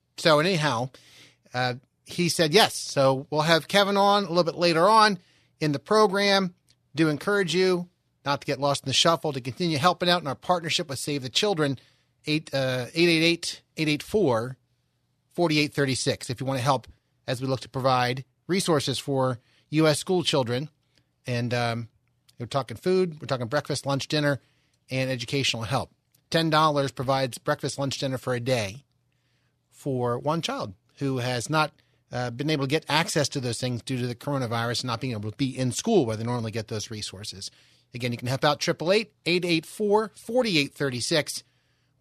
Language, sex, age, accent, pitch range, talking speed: English, male, 30-49, American, 125-165 Hz, 165 wpm